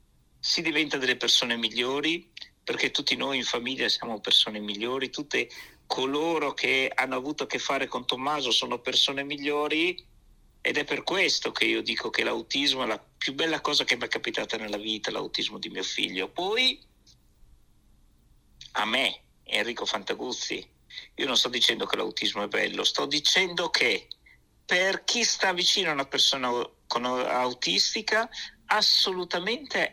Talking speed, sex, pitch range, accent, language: 150 wpm, male, 130-180 Hz, native, Italian